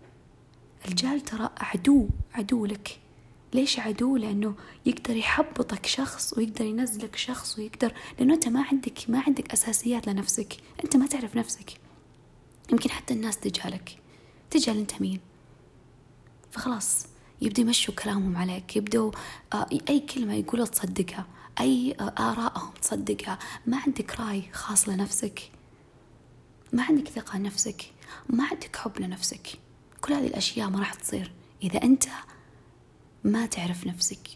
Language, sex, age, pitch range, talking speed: Arabic, female, 20-39, 190-245 Hz, 125 wpm